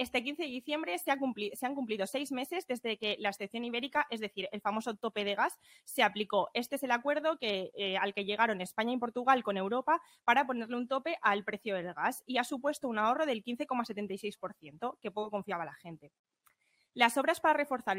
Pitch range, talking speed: 205-260 Hz, 205 wpm